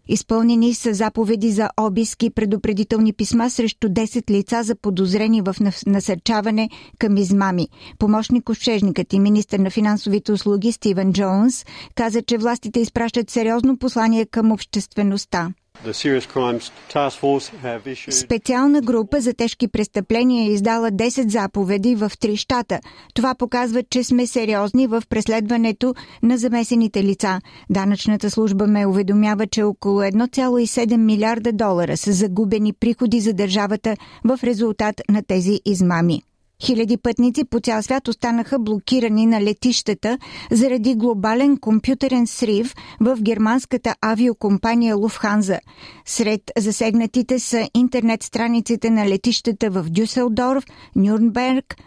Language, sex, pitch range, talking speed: Bulgarian, female, 205-235 Hz, 115 wpm